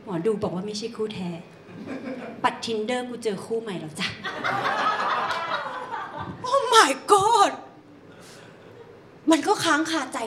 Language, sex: Thai, female